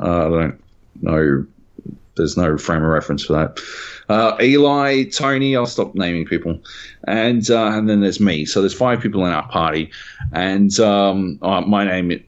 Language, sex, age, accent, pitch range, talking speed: English, male, 30-49, Australian, 80-105 Hz, 175 wpm